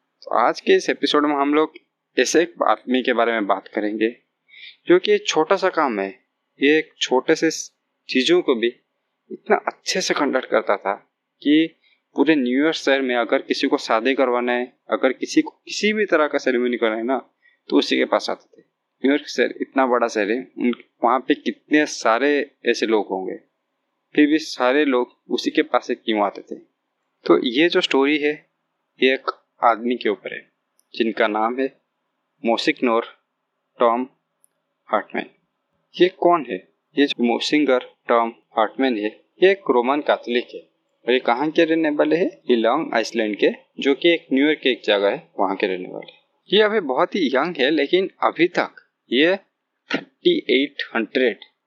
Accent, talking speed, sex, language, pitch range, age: native, 115 wpm, male, Hindi, 120-165 Hz, 20-39